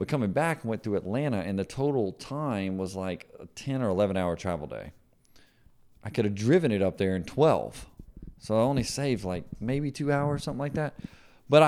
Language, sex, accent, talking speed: English, male, American, 205 wpm